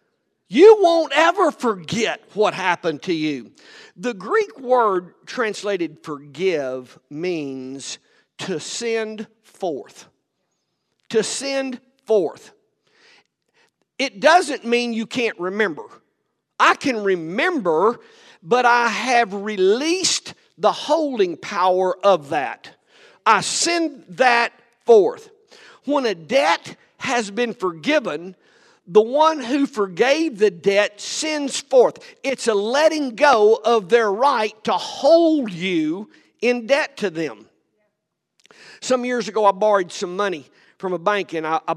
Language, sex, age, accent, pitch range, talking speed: English, male, 50-69, American, 180-275 Hz, 120 wpm